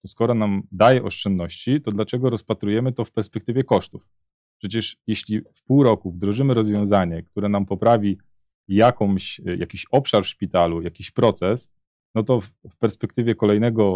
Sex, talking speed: male, 145 wpm